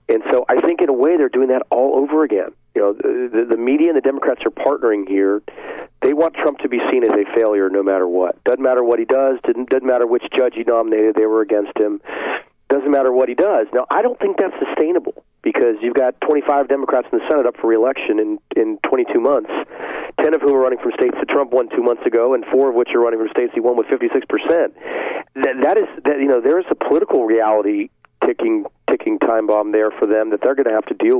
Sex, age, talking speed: male, 40-59, 250 wpm